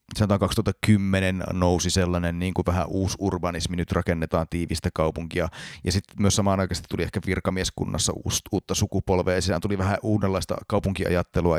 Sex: male